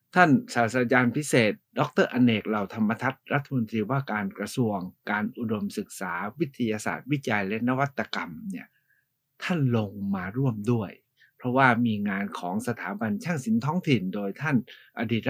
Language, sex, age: Thai, male, 60-79